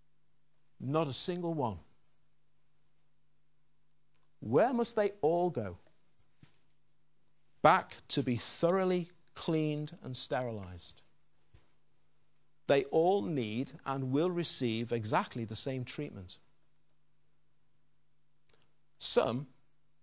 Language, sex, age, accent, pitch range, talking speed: English, male, 50-69, British, 135-155 Hz, 80 wpm